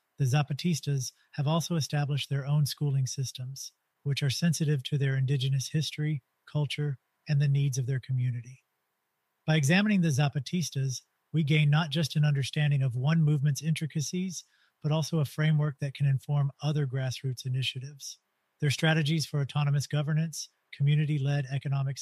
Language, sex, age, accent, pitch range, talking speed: English, male, 40-59, American, 135-150 Hz, 145 wpm